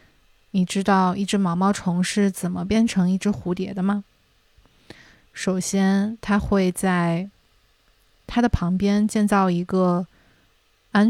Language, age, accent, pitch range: Chinese, 20-39, native, 180-210 Hz